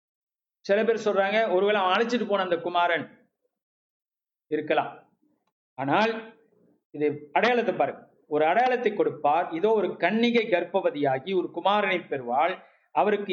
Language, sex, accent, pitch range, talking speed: Tamil, male, native, 185-225 Hz, 110 wpm